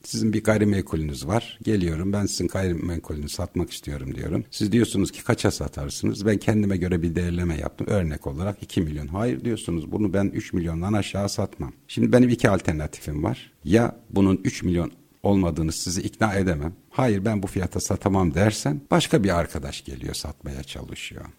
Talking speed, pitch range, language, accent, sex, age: 165 wpm, 85-115 Hz, Turkish, native, male, 60-79